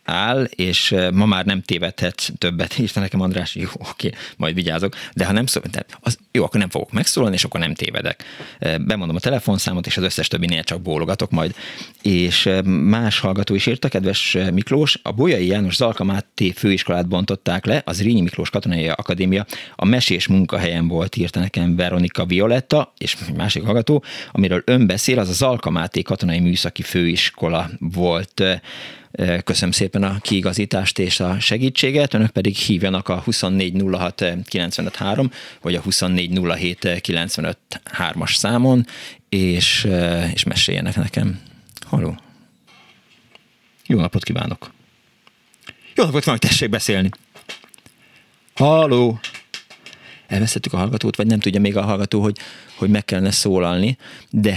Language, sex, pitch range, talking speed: Hungarian, male, 90-105 Hz, 135 wpm